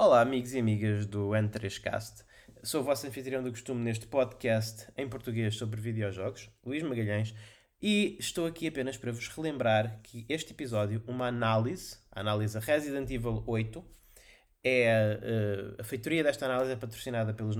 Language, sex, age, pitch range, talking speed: Portuguese, male, 20-39, 110-135 Hz, 150 wpm